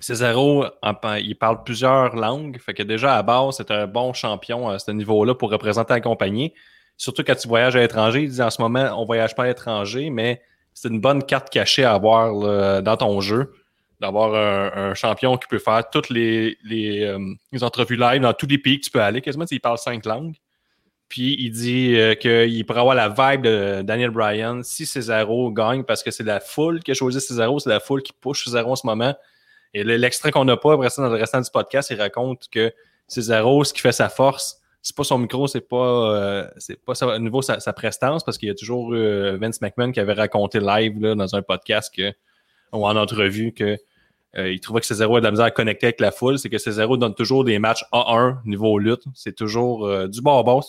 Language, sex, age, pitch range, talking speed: French, male, 20-39, 110-130 Hz, 230 wpm